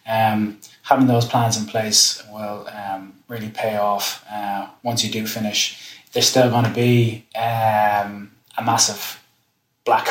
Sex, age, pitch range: male, 20-39, 110-120 Hz